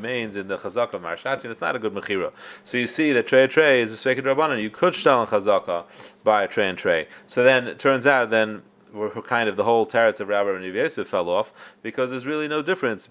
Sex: male